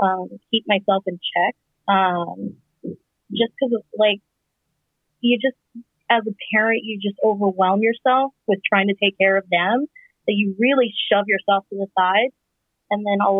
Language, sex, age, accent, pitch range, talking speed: English, female, 30-49, American, 195-255 Hz, 165 wpm